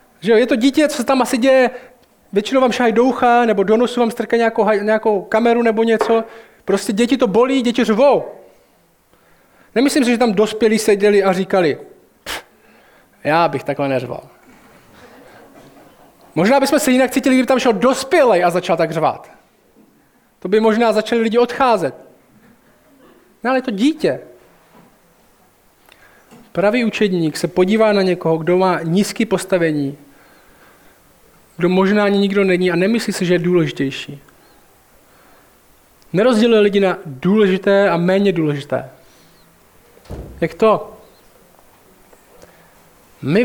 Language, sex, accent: Czech, male, native